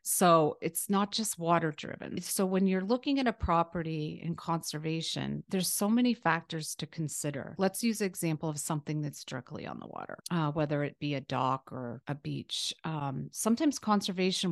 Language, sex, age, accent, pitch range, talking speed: English, female, 40-59, American, 150-180 Hz, 180 wpm